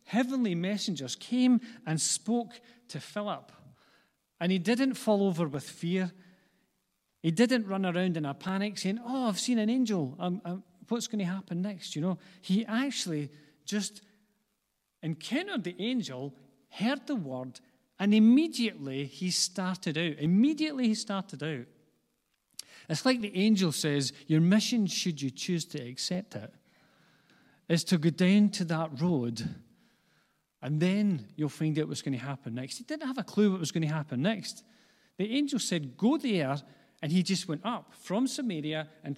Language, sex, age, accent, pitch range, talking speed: English, male, 40-59, British, 155-220 Hz, 165 wpm